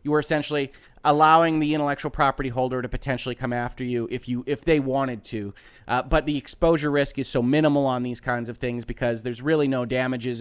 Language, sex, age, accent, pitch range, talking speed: English, male, 30-49, American, 125-145 Hz, 215 wpm